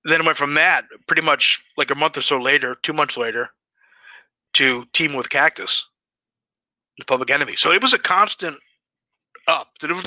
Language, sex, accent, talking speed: English, male, American, 190 wpm